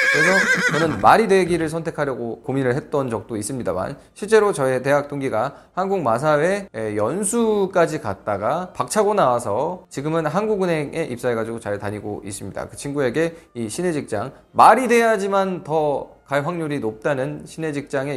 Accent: native